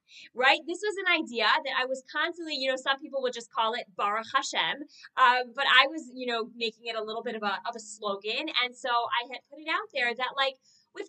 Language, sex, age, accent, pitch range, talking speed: English, female, 20-39, American, 210-290 Hz, 255 wpm